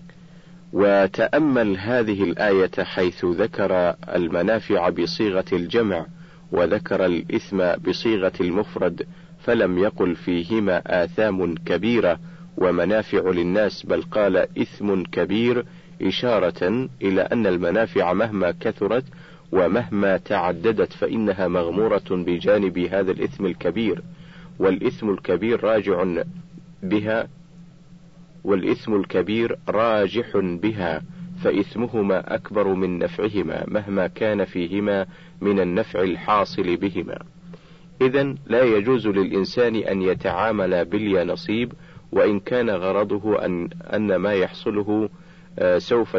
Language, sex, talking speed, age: Arabic, male, 95 wpm, 50-69